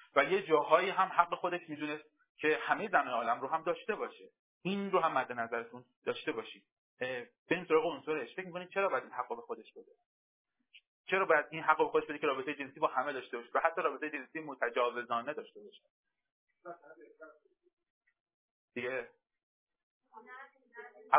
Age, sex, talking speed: 30-49, male, 165 wpm